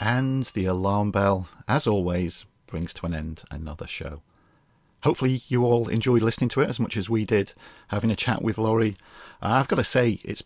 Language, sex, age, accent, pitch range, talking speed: English, male, 40-59, British, 95-115 Hz, 200 wpm